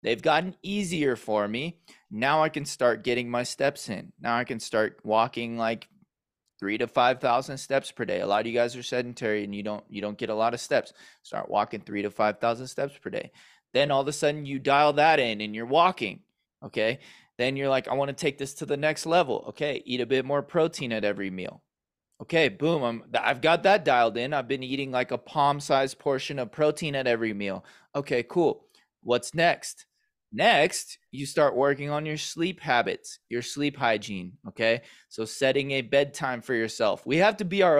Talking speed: 210 wpm